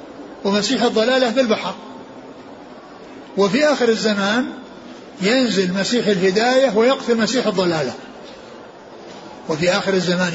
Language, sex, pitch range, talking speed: Arabic, male, 175-215 Hz, 95 wpm